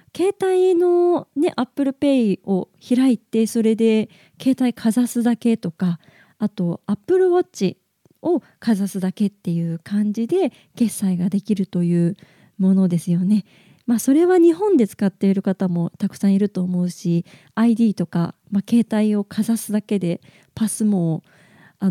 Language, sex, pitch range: Japanese, female, 190-255 Hz